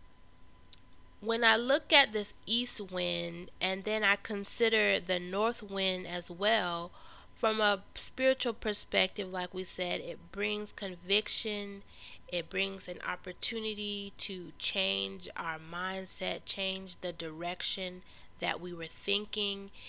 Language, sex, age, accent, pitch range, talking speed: English, female, 20-39, American, 180-225 Hz, 125 wpm